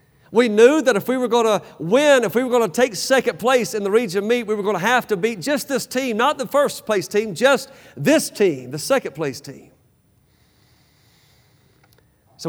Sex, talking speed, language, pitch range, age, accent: male, 210 wpm, English, 145-220 Hz, 40-59, American